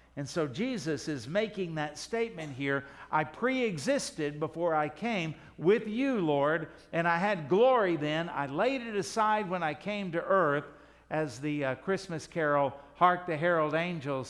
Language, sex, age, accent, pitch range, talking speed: English, male, 60-79, American, 155-210 Hz, 170 wpm